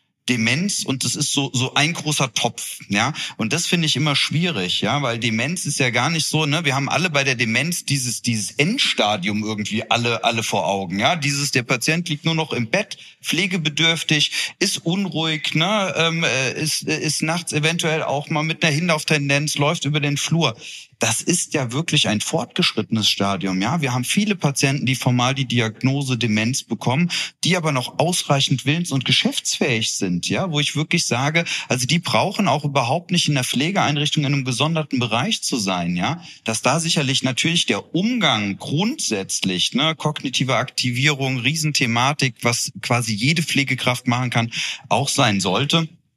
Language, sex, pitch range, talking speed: German, male, 120-160 Hz, 175 wpm